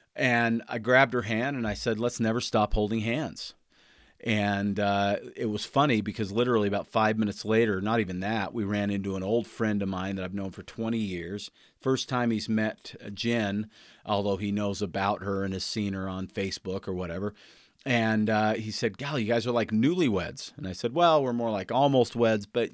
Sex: male